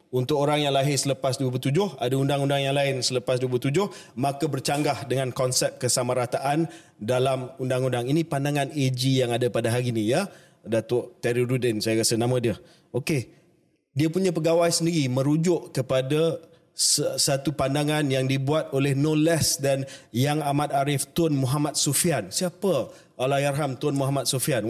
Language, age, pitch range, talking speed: Malay, 30-49, 135-170 Hz, 145 wpm